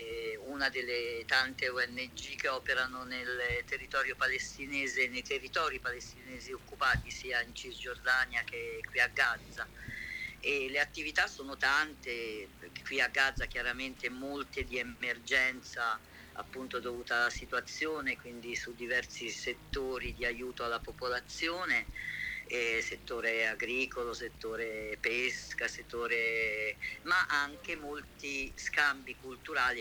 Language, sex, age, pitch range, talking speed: Italian, female, 50-69, 120-140 Hz, 110 wpm